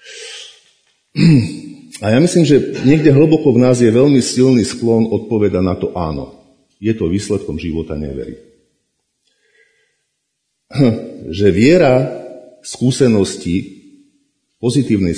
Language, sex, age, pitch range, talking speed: Slovak, male, 50-69, 90-120 Hz, 100 wpm